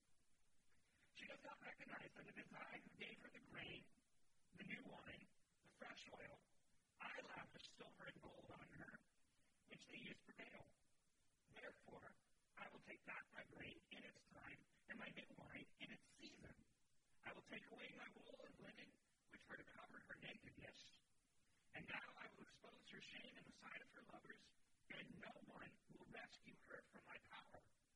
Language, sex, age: English, male, 40-59